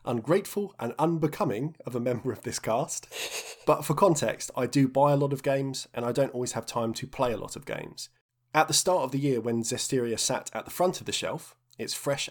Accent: British